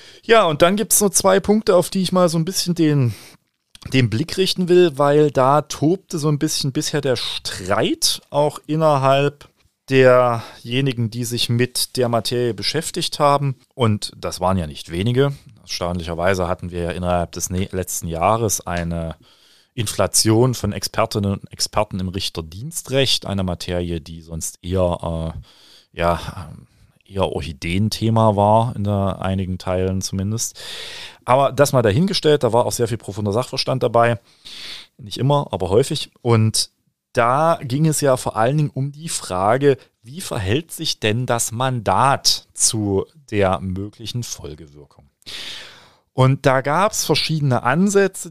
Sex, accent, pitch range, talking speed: male, German, 95-140 Hz, 150 wpm